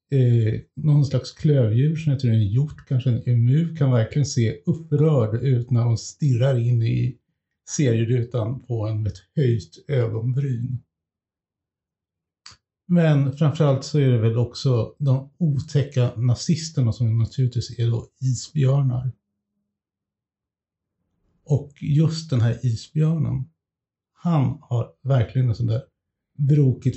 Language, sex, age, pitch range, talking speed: Swedish, male, 60-79, 120-145 Hz, 115 wpm